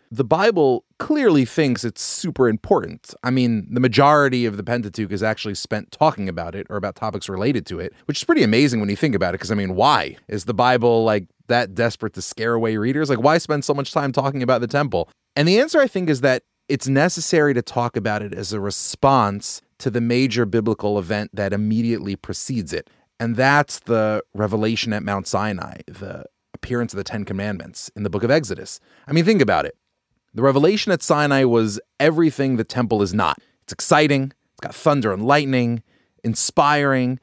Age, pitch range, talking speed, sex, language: 30-49, 110-140 Hz, 200 wpm, male, English